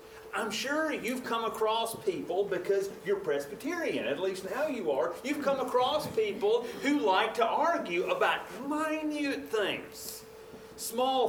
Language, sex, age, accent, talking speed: English, male, 40-59, American, 140 wpm